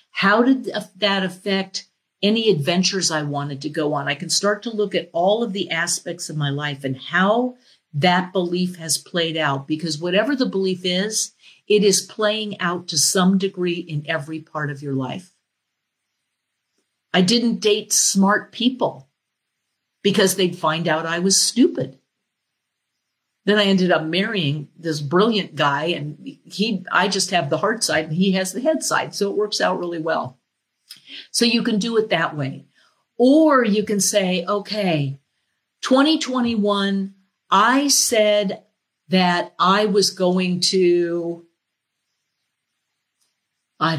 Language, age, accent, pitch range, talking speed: English, 50-69, American, 165-210 Hz, 150 wpm